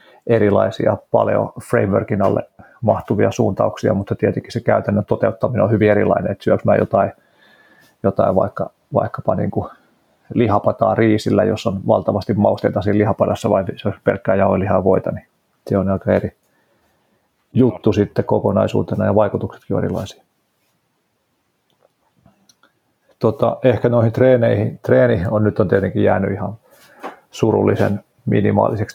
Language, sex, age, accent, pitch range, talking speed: Finnish, male, 40-59, native, 95-115 Hz, 125 wpm